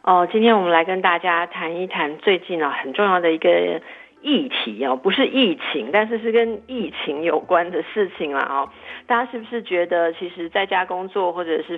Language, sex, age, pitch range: Chinese, female, 50-69, 155-205 Hz